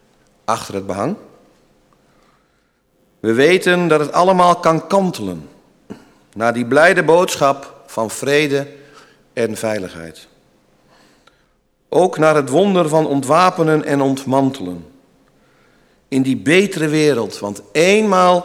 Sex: male